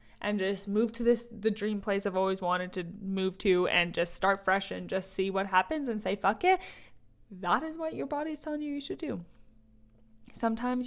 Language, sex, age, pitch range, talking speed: English, female, 20-39, 185-245 Hz, 210 wpm